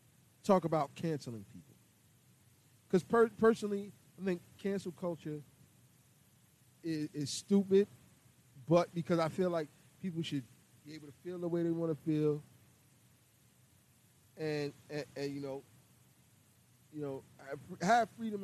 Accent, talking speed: American, 130 wpm